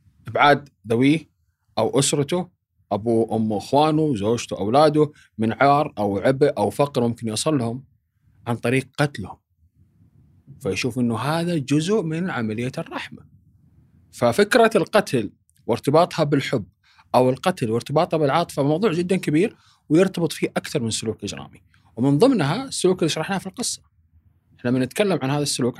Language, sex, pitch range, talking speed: Arabic, male, 110-145 Hz, 130 wpm